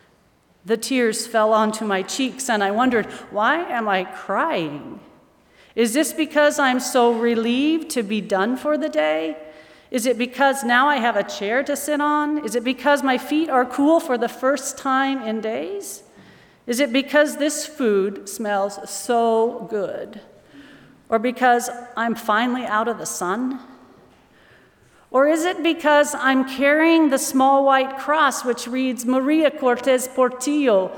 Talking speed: 155 wpm